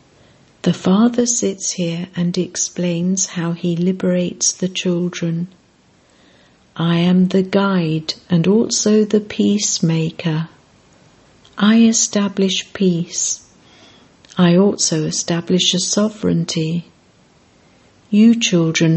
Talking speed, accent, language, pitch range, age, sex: 90 wpm, British, English, 170-200 Hz, 60-79, female